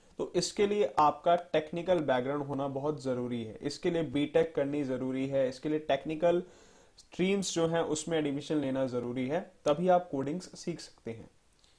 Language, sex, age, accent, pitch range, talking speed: Hindi, male, 30-49, native, 140-180 Hz, 170 wpm